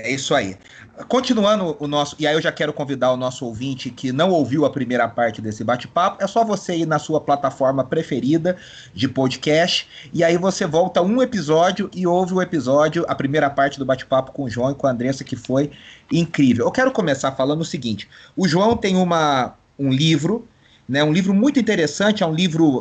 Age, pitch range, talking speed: 30-49, 140-180 Hz, 205 wpm